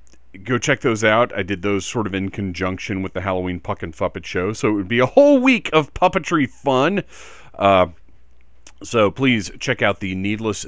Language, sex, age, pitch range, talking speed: English, male, 40-59, 85-120 Hz, 195 wpm